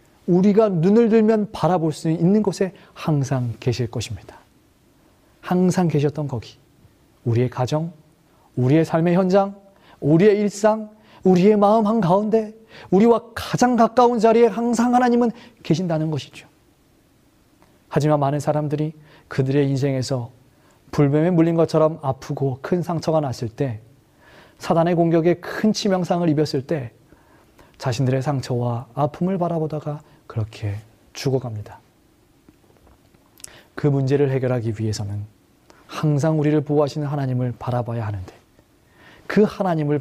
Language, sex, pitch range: Korean, male, 135-195 Hz